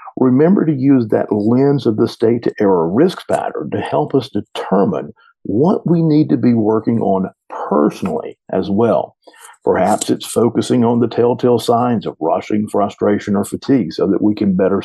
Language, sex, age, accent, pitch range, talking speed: English, male, 50-69, American, 110-145 Hz, 165 wpm